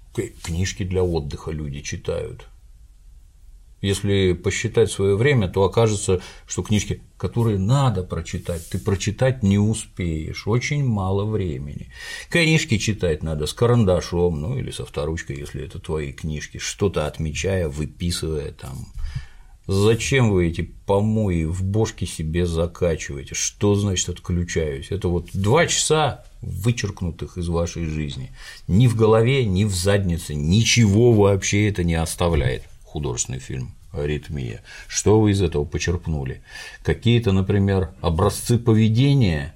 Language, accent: Russian, native